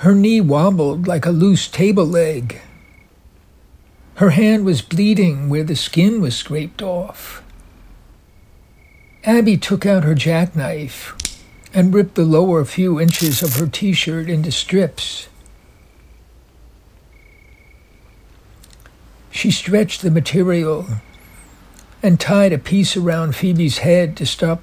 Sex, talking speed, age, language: male, 115 wpm, 60-79, English